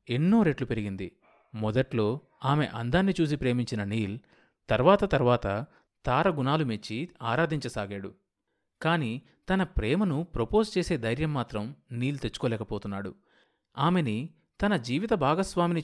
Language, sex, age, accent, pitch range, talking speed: Telugu, male, 30-49, native, 115-160 Hz, 100 wpm